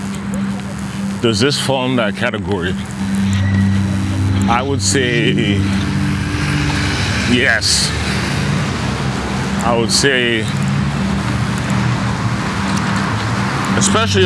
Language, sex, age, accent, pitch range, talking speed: English, male, 30-49, American, 95-130 Hz, 60 wpm